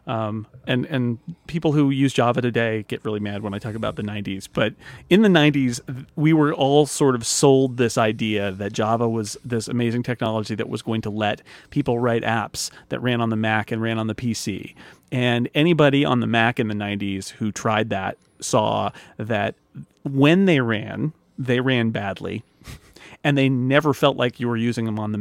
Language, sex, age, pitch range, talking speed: English, male, 30-49, 115-150 Hz, 200 wpm